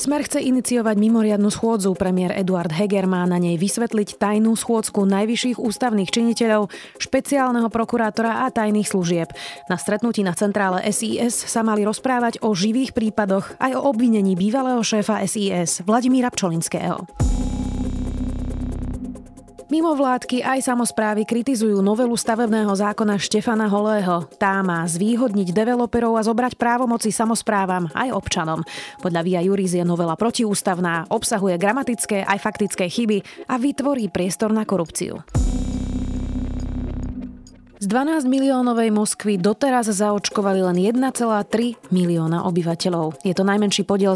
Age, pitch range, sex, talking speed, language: 30-49, 180-235 Hz, female, 120 wpm, Slovak